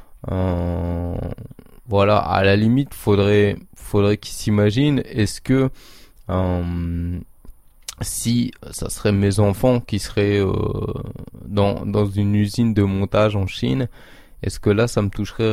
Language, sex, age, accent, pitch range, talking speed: French, male, 20-39, French, 95-110 Hz, 130 wpm